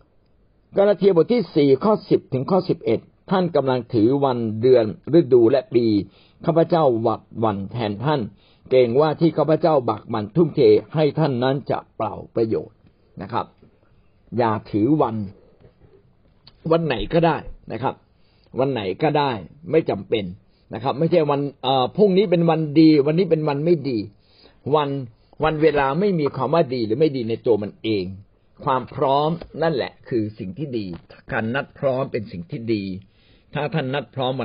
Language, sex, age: Thai, male, 60-79